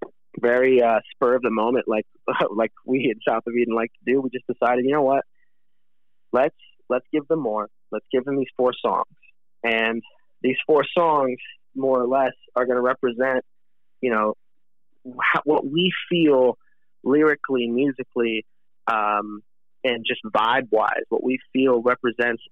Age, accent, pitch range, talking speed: 20-39, American, 115-130 Hz, 165 wpm